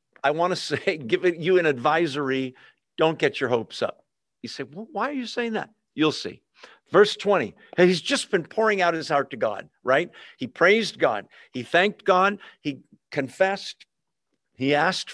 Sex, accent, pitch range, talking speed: male, American, 145-200 Hz, 175 wpm